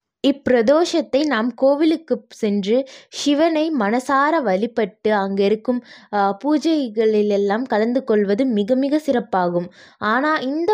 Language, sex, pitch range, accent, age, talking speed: Tamil, female, 215-285 Hz, native, 20-39, 95 wpm